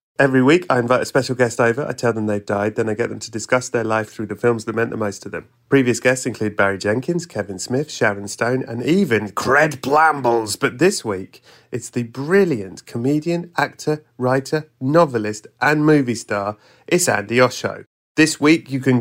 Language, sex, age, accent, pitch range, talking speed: English, male, 30-49, British, 115-140 Hz, 200 wpm